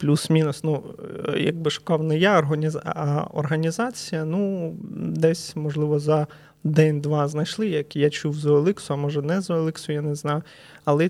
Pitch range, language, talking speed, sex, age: 145-165 Hz, Ukrainian, 155 wpm, male, 20-39